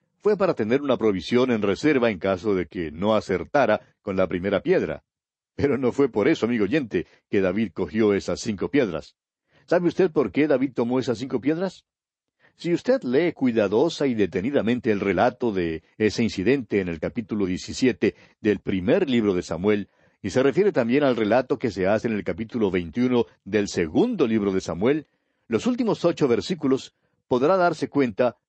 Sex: male